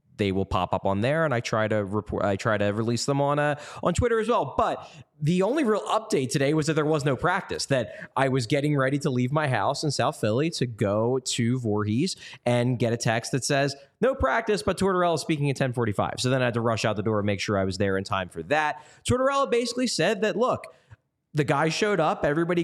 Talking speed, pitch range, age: 250 wpm, 115-160 Hz, 20-39